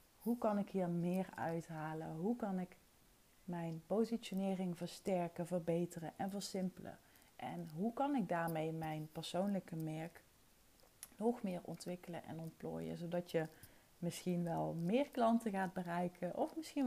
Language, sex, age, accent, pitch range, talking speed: Dutch, female, 30-49, Dutch, 165-205 Hz, 135 wpm